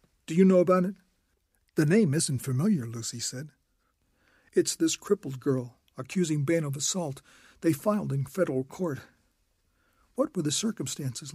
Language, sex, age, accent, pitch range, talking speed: English, male, 50-69, American, 135-175 Hz, 150 wpm